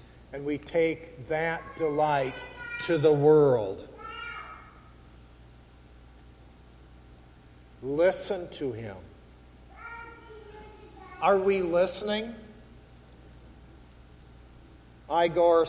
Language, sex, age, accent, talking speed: English, male, 50-69, American, 55 wpm